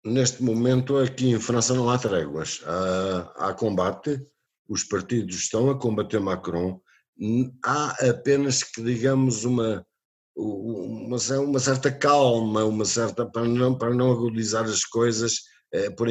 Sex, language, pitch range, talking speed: male, Portuguese, 95-120 Hz, 135 wpm